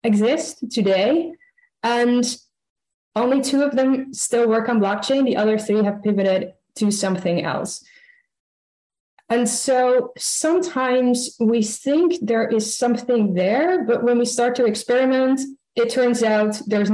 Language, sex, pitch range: English, female, 205-255 Hz